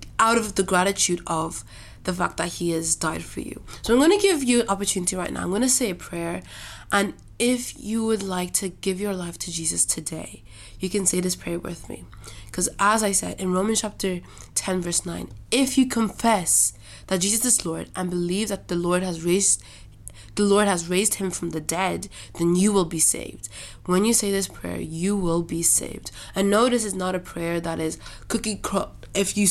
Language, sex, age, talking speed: English, female, 20-39, 215 wpm